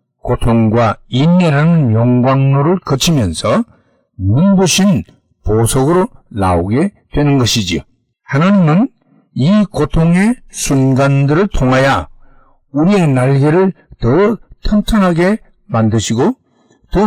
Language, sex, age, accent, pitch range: Korean, male, 60-79, native, 125-180 Hz